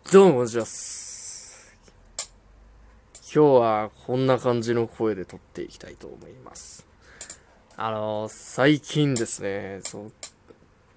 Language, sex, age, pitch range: Japanese, male, 20-39, 105-160 Hz